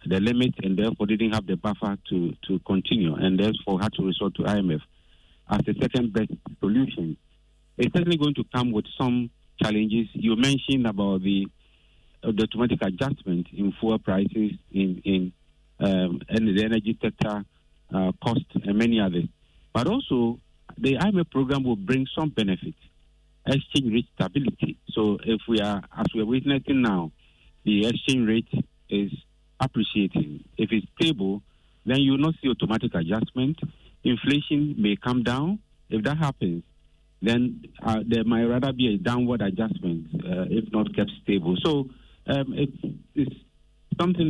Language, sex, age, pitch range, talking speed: English, male, 50-69, 100-130 Hz, 155 wpm